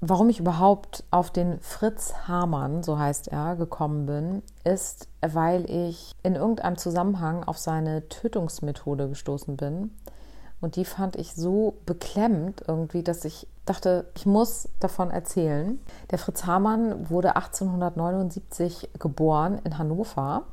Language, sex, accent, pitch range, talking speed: German, female, German, 160-195 Hz, 130 wpm